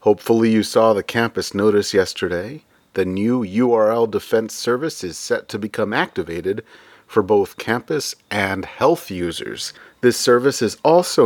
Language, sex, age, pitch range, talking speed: English, male, 30-49, 105-155 Hz, 145 wpm